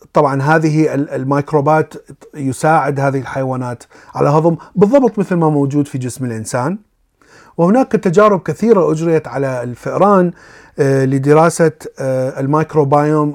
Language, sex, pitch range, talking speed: Arabic, male, 135-170 Hz, 105 wpm